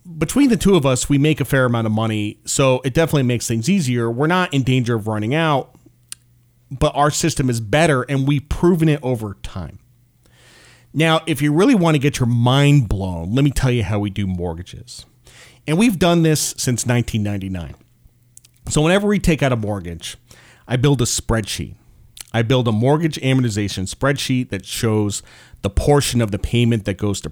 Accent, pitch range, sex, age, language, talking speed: American, 110-145 Hz, male, 40-59, English, 190 wpm